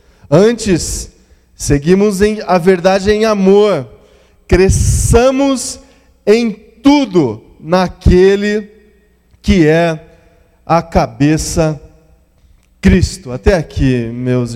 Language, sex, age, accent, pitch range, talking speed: Portuguese, male, 20-39, Brazilian, 135-160 Hz, 80 wpm